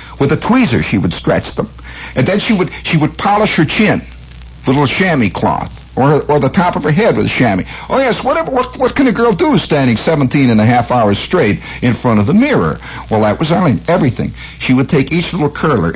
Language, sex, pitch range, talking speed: English, male, 95-155 Hz, 240 wpm